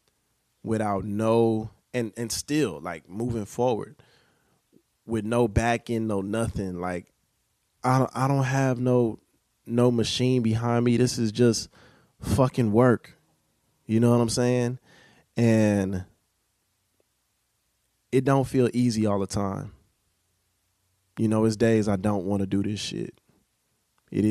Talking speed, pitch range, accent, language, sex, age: 135 wpm, 95-115 Hz, American, English, male, 20-39